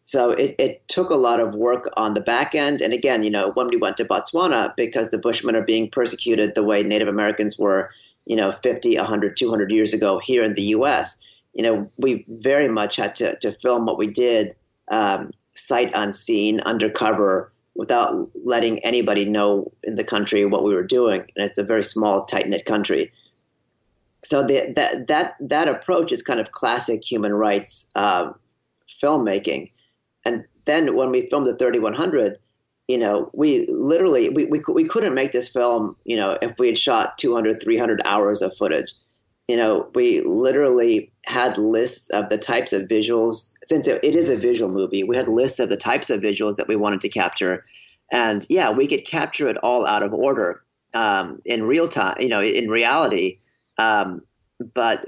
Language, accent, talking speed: English, American, 185 wpm